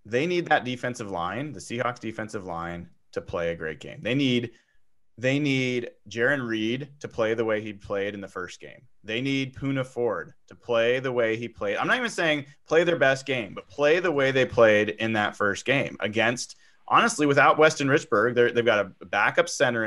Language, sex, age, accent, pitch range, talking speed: English, male, 30-49, American, 105-145 Hz, 210 wpm